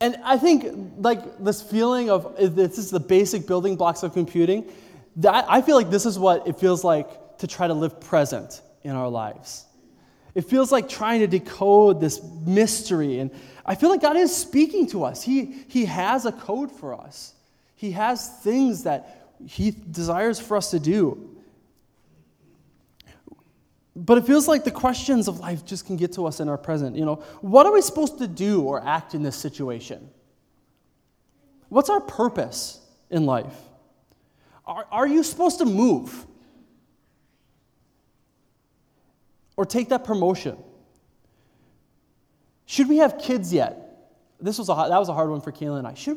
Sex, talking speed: male, 170 wpm